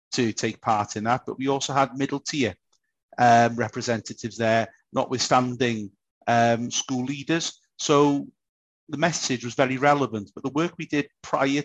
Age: 30-49